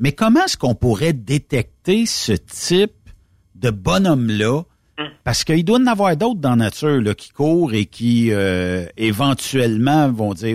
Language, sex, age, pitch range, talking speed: French, male, 60-79, 110-155 Hz, 160 wpm